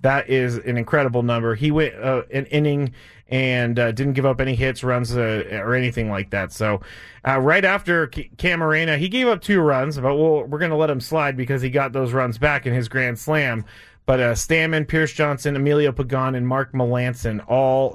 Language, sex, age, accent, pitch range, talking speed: English, male, 30-49, American, 115-150 Hz, 205 wpm